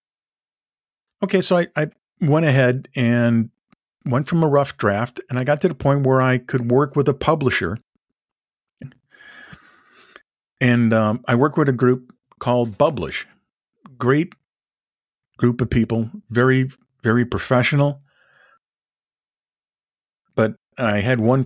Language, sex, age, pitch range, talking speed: English, male, 50-69, 110-145 Hz, 125 wpm